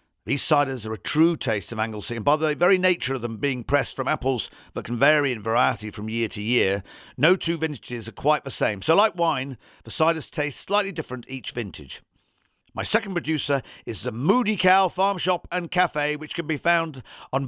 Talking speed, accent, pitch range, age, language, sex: 210 wpm, British, 130-185 Hz, 50-69, English, male